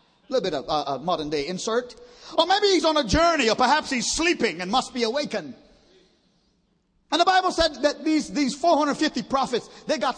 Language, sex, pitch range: English, male, 230-280 Hz